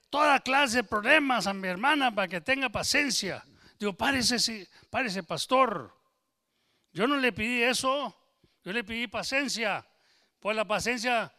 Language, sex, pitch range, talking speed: English, male, 170-230 Hz, 140 wpm